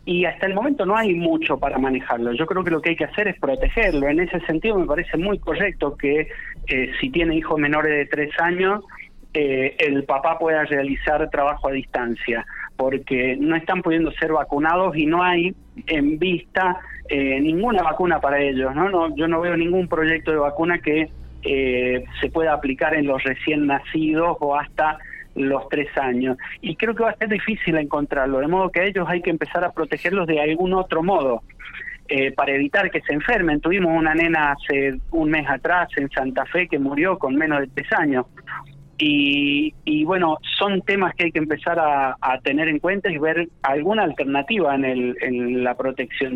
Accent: Argentinian